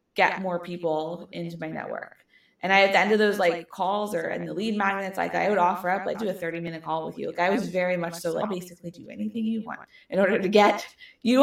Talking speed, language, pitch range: 265 wpm, English, 170-210 Hz